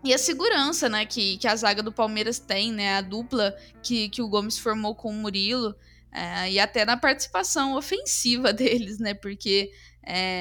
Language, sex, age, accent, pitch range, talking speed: Portuguese, female, 10-29, Brazilian, 210-250 Hz, 185 wpm